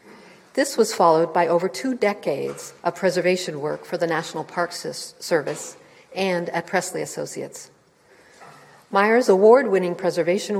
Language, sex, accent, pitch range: English, female, American, 165-190 Hz